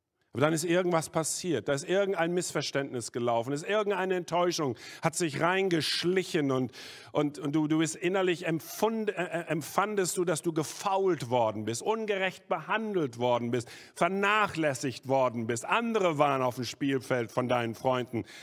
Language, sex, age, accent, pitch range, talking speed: German, male, 50-69, German, 120-165 Hz, 155 wpm